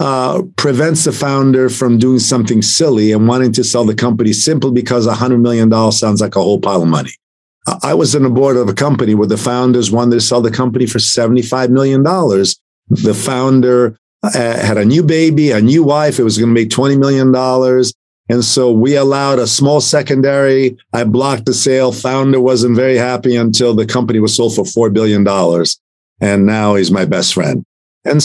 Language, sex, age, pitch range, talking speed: English, male, 50-69, 115-145 Hz, 195 wpm